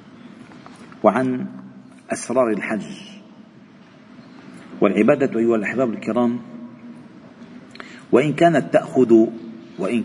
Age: 40-59